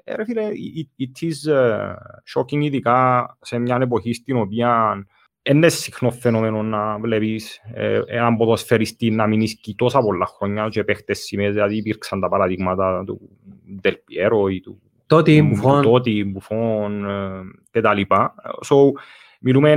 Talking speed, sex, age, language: 100 wpm, male, 30-49, Greek